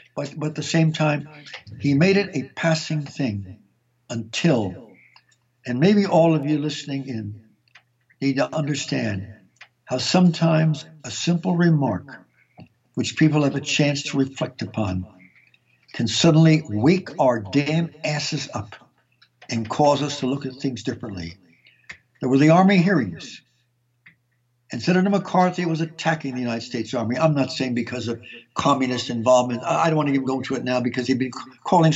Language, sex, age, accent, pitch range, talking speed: English, male, 60-79, American, 120-155 Hz, 160 wpm